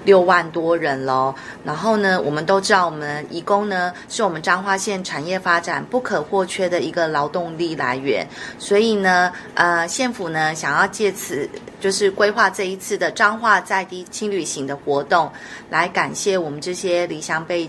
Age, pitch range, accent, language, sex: 30-49, 160-195 Hz, native, Chinese, female